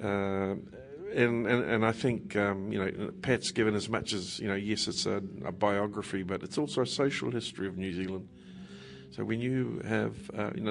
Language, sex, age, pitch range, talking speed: English, male, 50-69, 95-110 Hz, 190 wpm